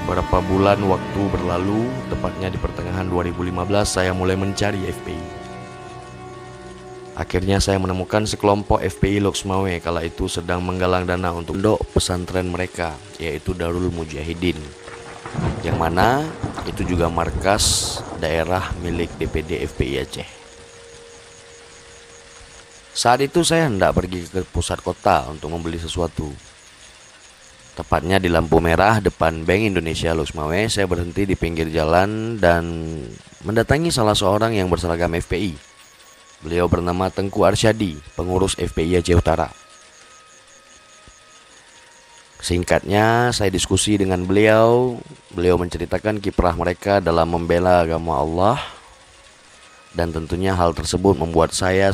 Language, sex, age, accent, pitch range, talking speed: Indonesian, male, 30-49, native, 85-100 Hz, 115 wpm